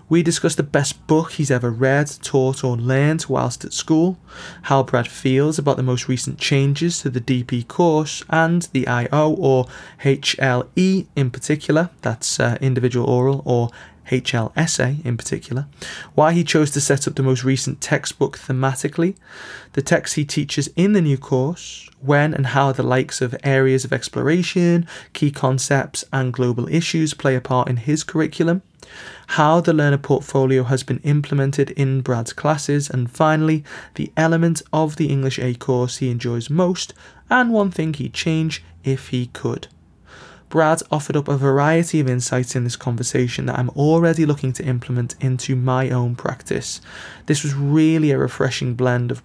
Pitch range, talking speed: 125-155 Hz, 165 wpm